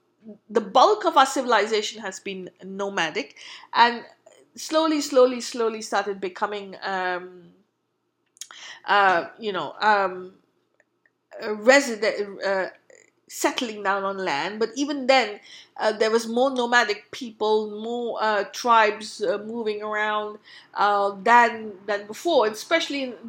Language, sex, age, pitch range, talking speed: English, female, 50-69, 210-275 Hz, 120 wpm